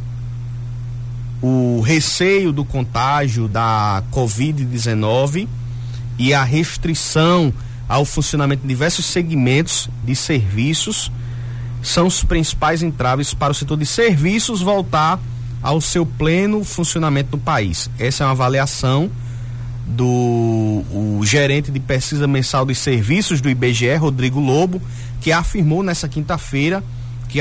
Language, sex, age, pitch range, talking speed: Portuguese, male, 30-49, 120-155 Hz, 115 wpm